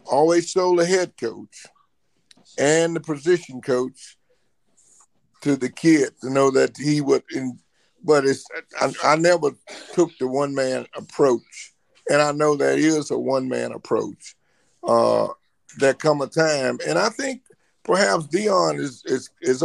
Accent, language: American, English